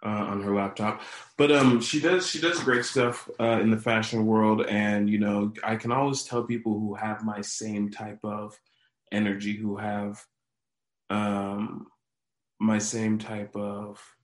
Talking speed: 165 wpm